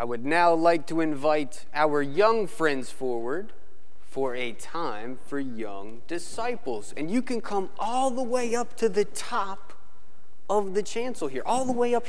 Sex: male